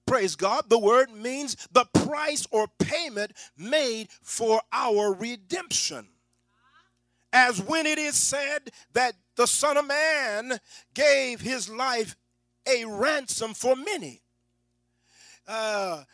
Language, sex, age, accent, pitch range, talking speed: English, male, 40-59, American, 210-300 Hz, 115 wpm